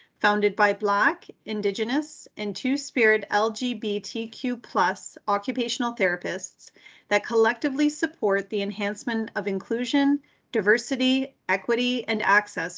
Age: 30-49